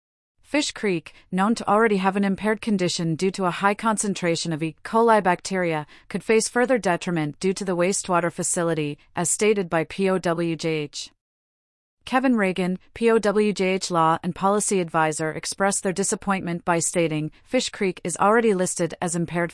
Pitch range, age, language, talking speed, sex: 170-205 Hz, 30-49, English, 155 wpm, female